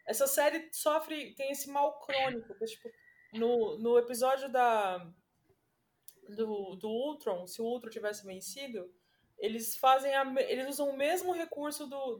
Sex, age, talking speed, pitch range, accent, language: female, 20-39, 115 wpm, 230-295 Hz, Brazilian, Portuguese